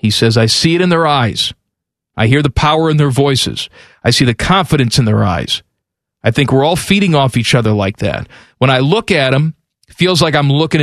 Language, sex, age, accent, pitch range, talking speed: English, male, 40-59, American, 120-170 Hz, 235 wpm